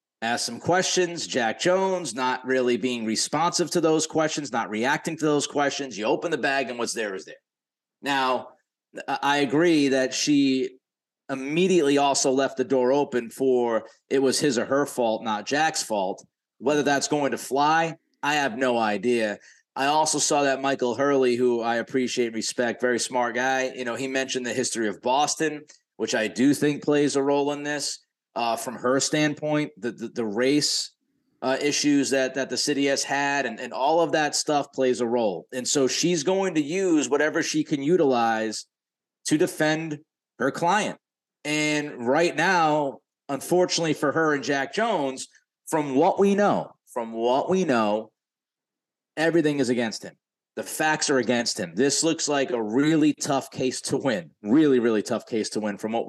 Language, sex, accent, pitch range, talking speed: English, male, American, 125-150 Hz, 180 wpm